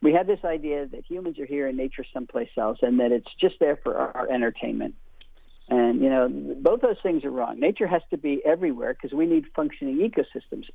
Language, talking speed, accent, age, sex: English, 220 wpm, American, 50-69, male